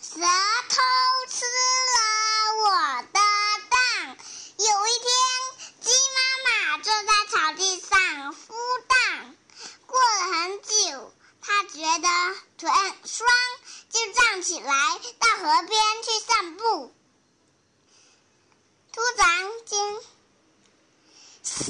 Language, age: Chinese, 50-69